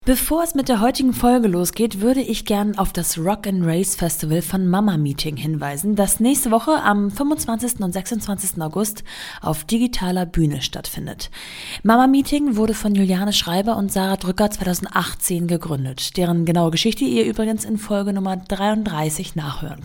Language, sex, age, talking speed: German, female, 20-39, 160 wpm